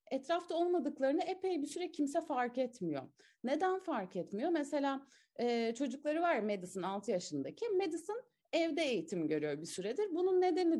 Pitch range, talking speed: 210-330 Hz, 150 wpm